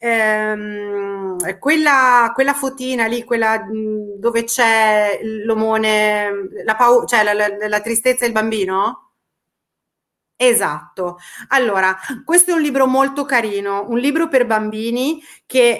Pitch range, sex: 215-265 Hz, female